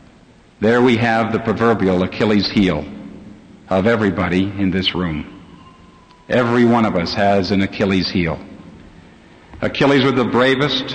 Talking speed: 130 wpm